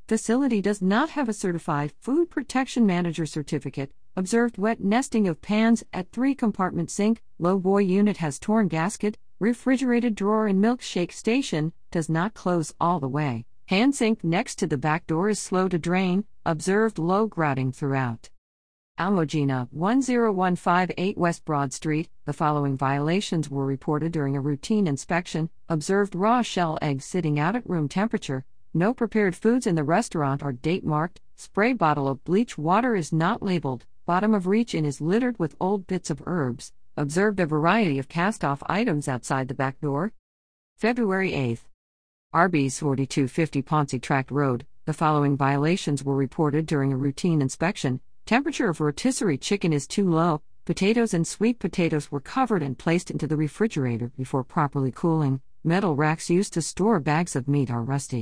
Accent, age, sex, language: American, 50-69, female, English